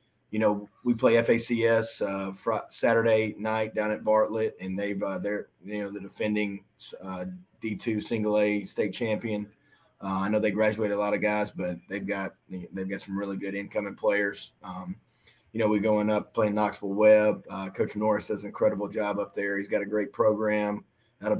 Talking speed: 195 wpm